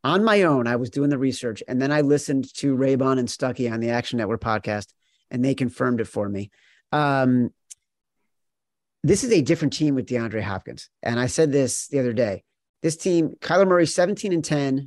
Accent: American